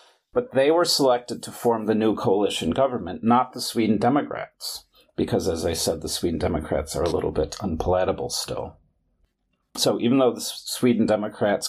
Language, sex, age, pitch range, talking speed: English, male, 40-59, 95-120 Hz, 170 wpm